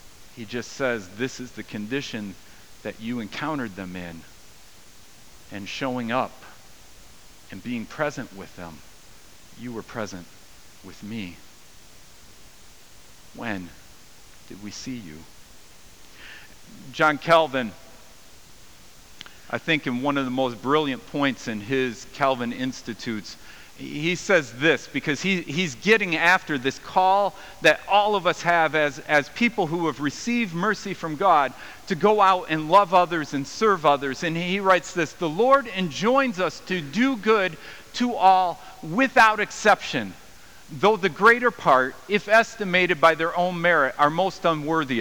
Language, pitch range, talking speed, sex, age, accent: English, 120-185 Hz, 140 wpm, male, 50-69, American